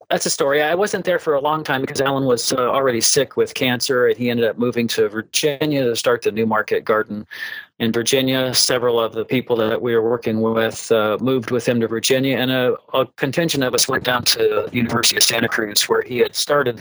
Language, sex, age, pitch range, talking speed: English, male, 40-59, 115-145 Hz, 235 wpm